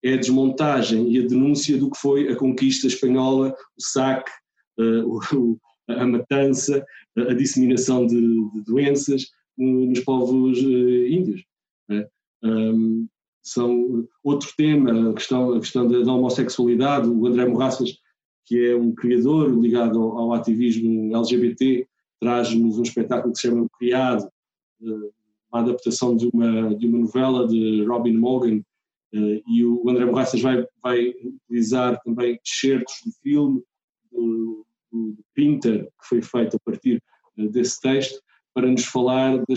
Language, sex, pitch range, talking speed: Portuguese, male, 115-130 Hz, 135 wpm